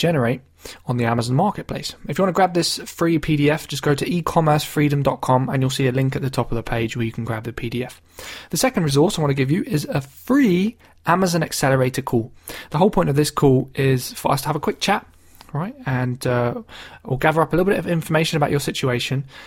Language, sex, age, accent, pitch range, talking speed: English, male, 20-39, British, 120-155 Hz, 235 wpm